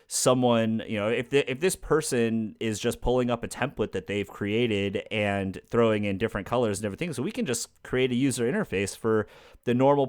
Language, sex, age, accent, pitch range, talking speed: English, male, 30-49, American, 100-120 Hz, 210 wpm